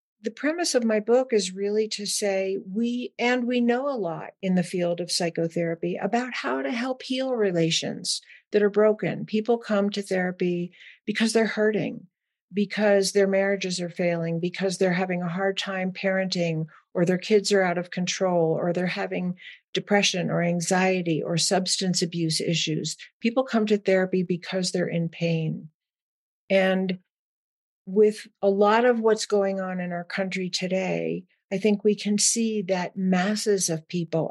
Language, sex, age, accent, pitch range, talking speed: English, female, 50-69, American, 175-205 Hz, 165 wpm